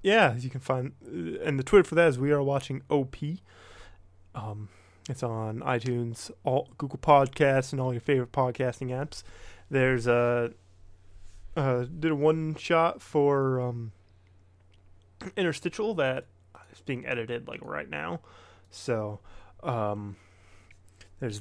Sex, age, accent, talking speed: male, 20-39, American, 130 wpm